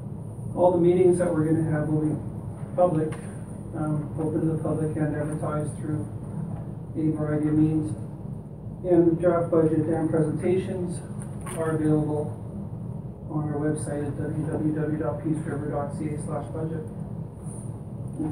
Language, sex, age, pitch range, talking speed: English, male, 30-49, 150-160 Hz, 130 wpm